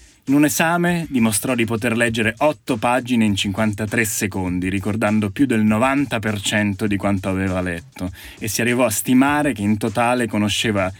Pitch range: 100-125 Hz